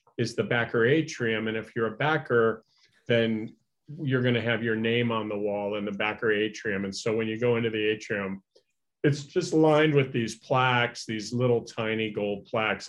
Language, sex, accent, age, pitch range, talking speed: English, male, American, 40-59, 105-125 Hz, 195 wpm